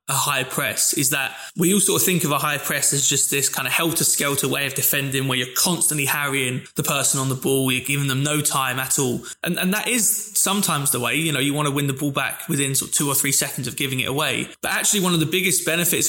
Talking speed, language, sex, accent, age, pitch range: 270 wpm, English, male, British, 20-39, 140-170 Hz